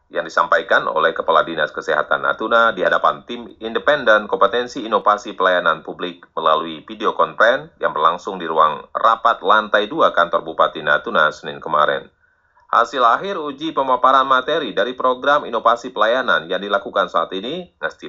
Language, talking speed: Indonesian, 145 wpm